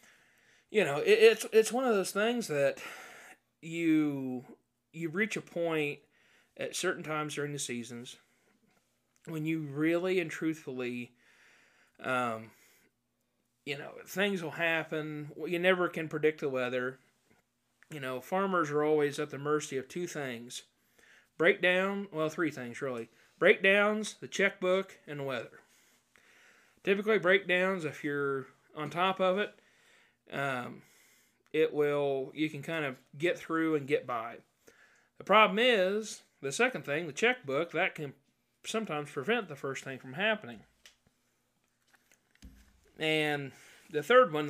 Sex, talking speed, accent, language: male, 135 wpm, American, English